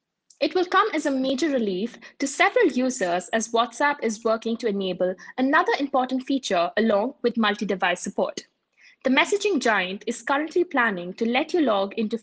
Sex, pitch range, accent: female, 210-285 Hz, Indian